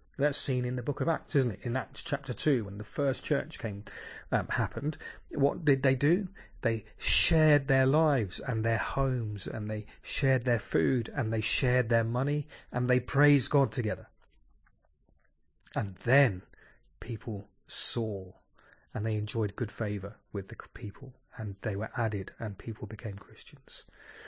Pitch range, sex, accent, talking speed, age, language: 110-140 Hz, male, British, 165 wpm, 40-59, English